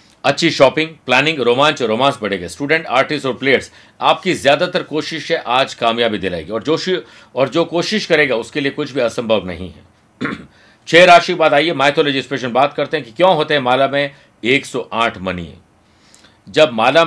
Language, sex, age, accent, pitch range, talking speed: Hindi, male, 50-69, native, 125-155 Hz, 180 wpm